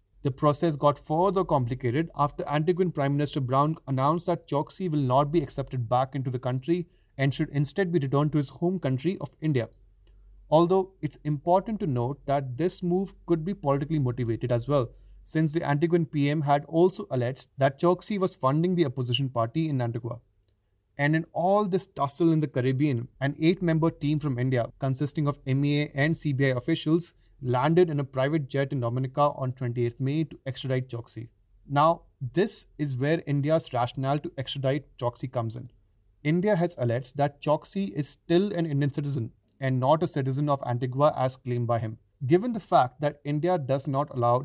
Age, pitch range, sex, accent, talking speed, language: 30-49, 125-160 Hz, male, Indian, 180 wpm, English